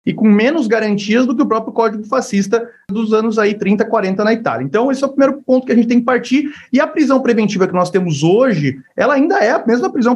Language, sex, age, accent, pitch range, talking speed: Portuguese, male, 30-49, Brazilian, 195-255 Hz, 250 wpm